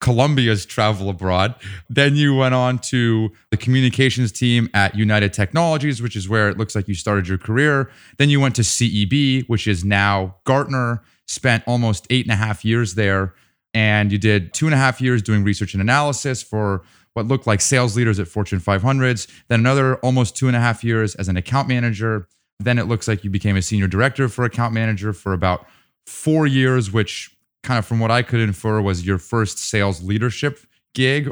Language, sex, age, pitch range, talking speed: English, male, 30-49, 105-130 Hz, 200 wpm